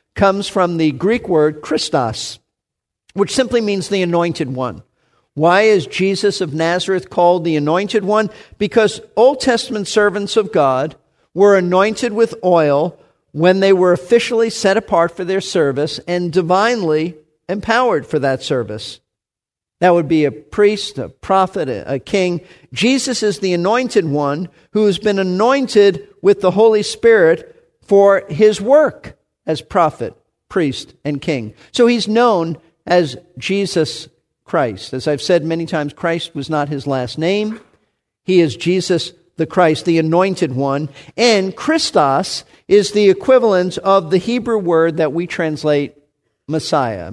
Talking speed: 145 wpm